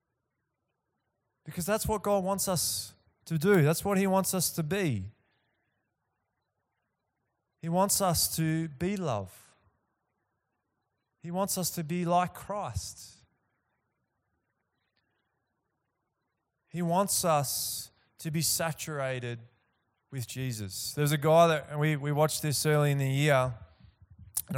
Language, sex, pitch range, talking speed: English, male, 120-155 Hz, 120 wpm